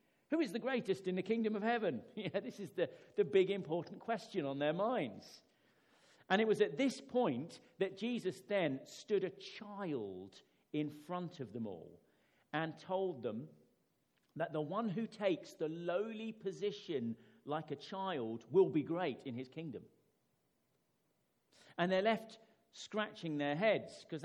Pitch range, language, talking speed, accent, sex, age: 145-210 Hz, English, 155 wpm, British, male, 50-69